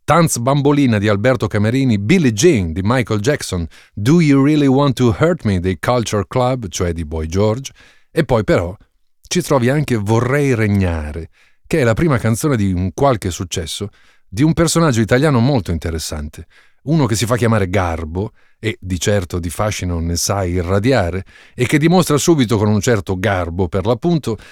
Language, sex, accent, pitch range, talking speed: Italian, male, native, 95-130 Hz, 175 wpm